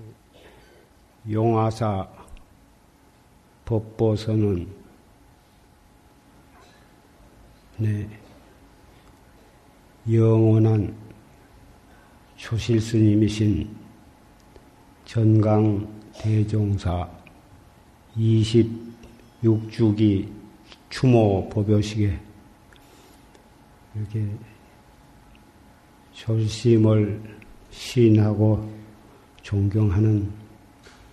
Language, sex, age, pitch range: Korean, male, 50-69, 105-110 Hz